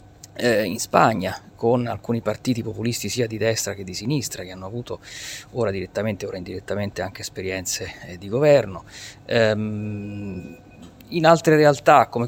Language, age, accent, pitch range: Italian, 30-49, native, 105-130 Hz